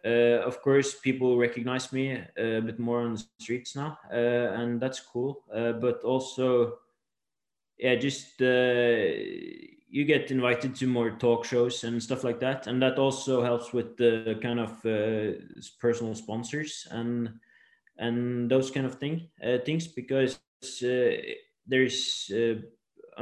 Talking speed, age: 145 wpm, 20-39